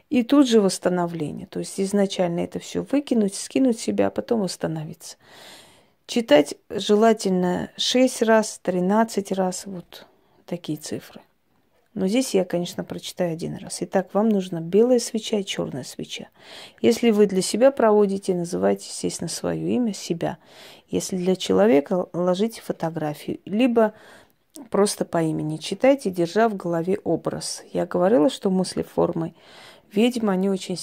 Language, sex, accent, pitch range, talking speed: Russian, female, native, 175-220 Hz, 140 wpm